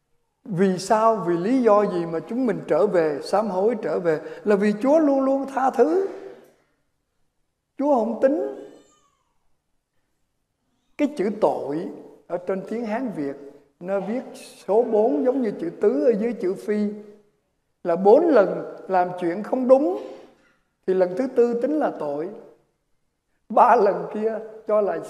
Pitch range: 175-245 Hz